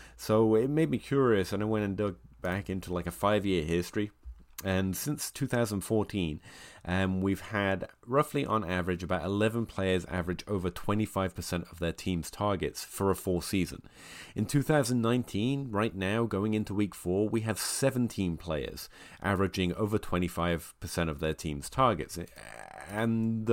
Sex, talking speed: male, 150 wpm